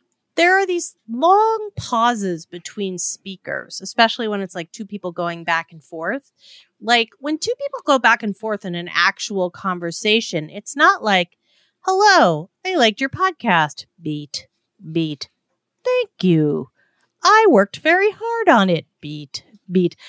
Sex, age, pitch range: female, 30-49, 185-310 Hz